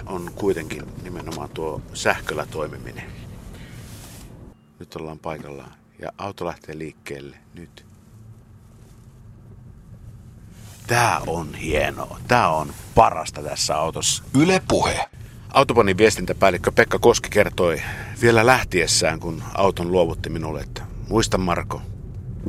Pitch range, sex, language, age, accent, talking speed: 95-115 Hz, male, Finnish, 60-79, native, 100 wpm